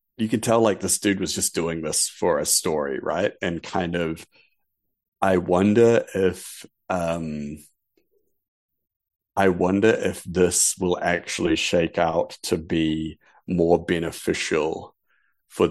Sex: male